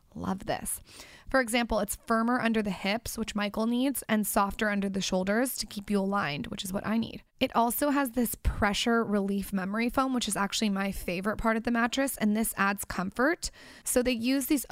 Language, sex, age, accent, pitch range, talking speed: English, female, 20-39, American, 195-230 Hz, 210 wpm